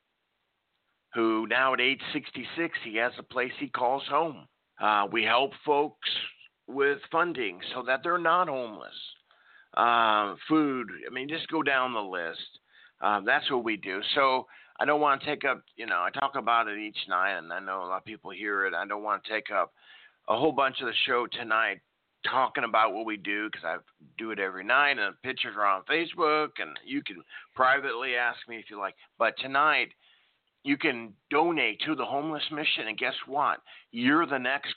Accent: American